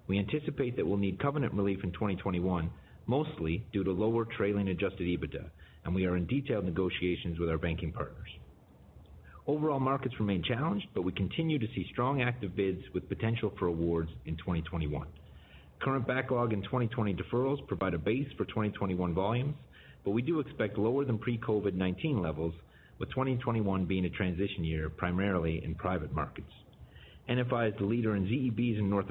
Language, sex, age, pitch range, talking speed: English, male, 40-59, 90-120 Hz, 165 wpm